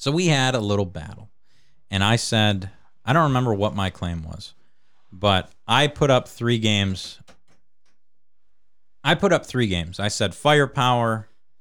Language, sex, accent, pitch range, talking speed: English, male, American, 90-125 Hz, 155 wpm